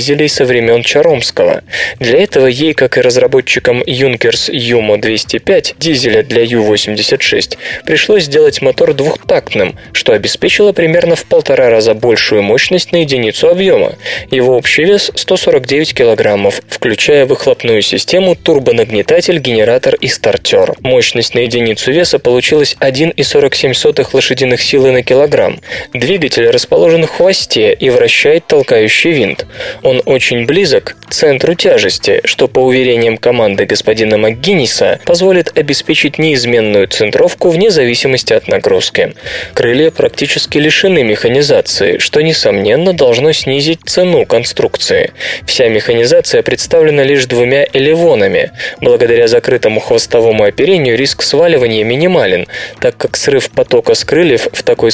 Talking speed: 120 wpm